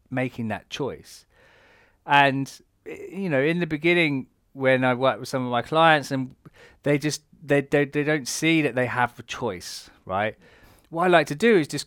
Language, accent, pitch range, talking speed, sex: English, British, 115-155 Hz, 190 wpm, male